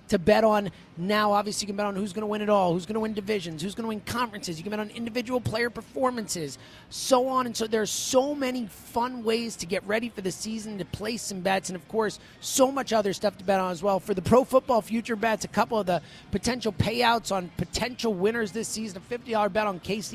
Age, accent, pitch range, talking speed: 30-49, American, 185-225 Hz, 255 wpm